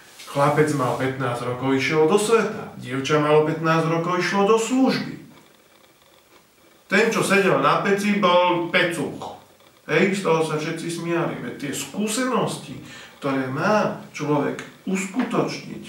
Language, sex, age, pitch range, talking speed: Slovak, male, 40-59, 145-175 Hz, 130 wpm